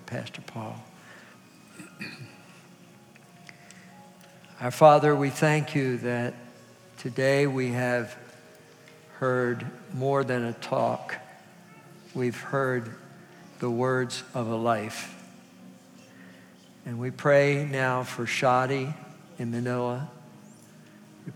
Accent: American